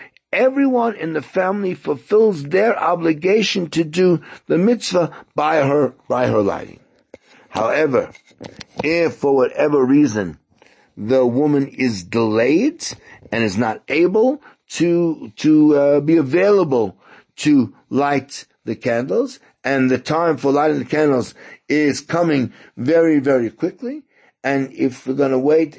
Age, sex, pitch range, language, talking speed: 60-79, male, 140-200 Hz, English, 130 wpm